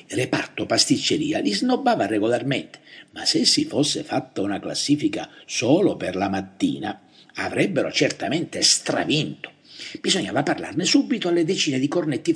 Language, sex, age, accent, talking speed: Italian, male, 60-79, native, 125 wpm